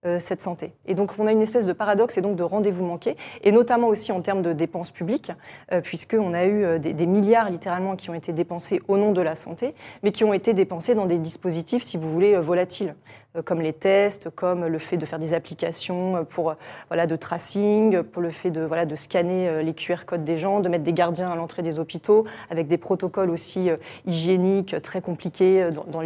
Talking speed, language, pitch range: 215 wpm, French, 170-205 Hz